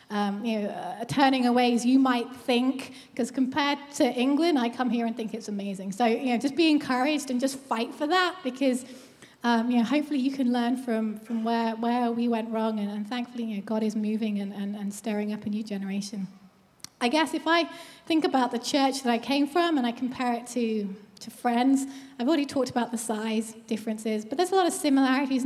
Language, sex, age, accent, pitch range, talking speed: English, female, 20-39, British, 225-270 Hz, 225 wpm